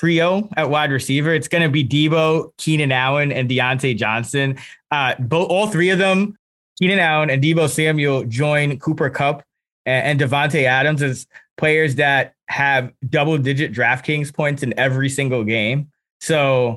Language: English